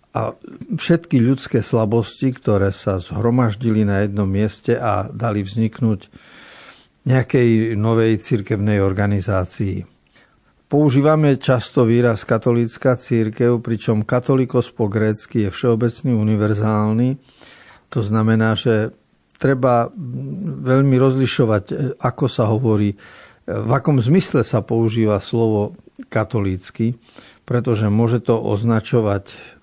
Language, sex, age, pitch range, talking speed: Slovak, male, 50-69, 110-130 Hz, 100 wpm